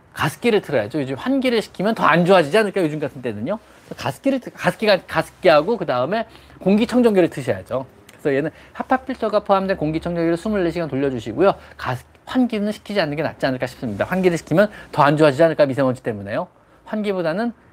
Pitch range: 135-210 Hz